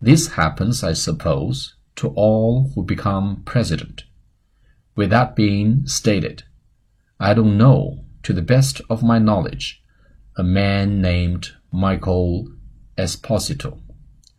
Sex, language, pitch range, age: male, Chinese, 90-115 Hz, 40-59